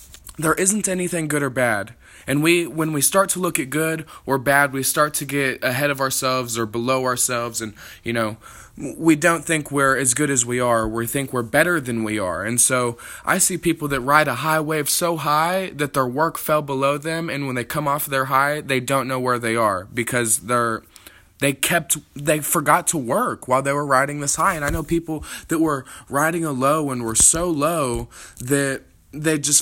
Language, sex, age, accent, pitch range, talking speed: English, male, 20-39, American, 130-165 Hz, 215 wpm